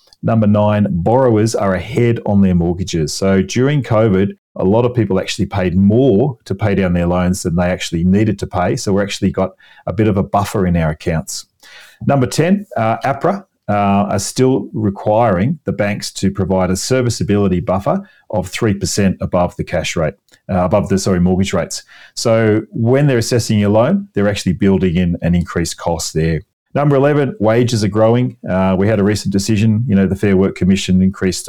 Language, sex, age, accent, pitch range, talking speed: English, male, 40-59, Australian, 95-115 Hz, 190 wpm